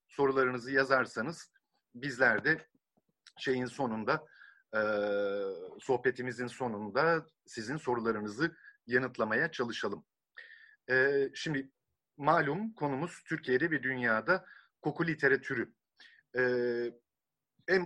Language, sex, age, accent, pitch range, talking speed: Turkish, male, 50-69, native, 115-145 Hz, 80 wpm